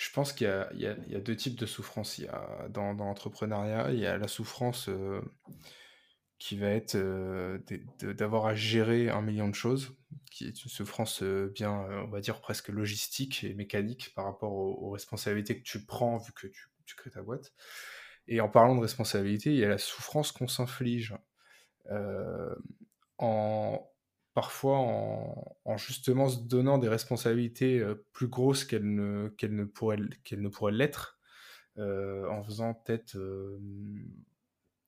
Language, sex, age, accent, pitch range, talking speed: French, male, 20-39, French, 100-125 Hz, 180 wpm